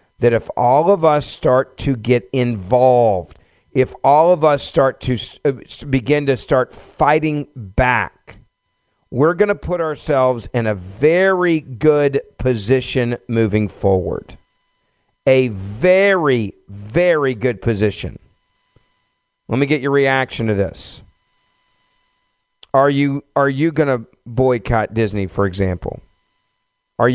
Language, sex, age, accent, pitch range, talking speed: English, male, 50-69, American, 110-135 Hz, 125 wpm